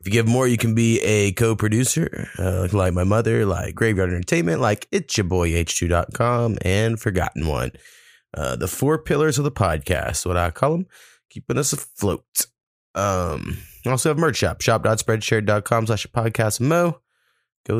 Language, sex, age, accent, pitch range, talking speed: English, male, 30-49, American, 85-115 Hz, 165 wpm